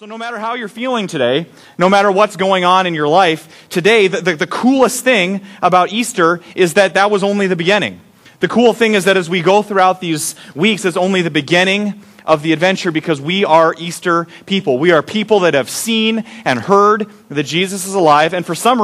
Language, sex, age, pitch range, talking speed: English, male, 30-49, 170-210 Hz, 215 wpm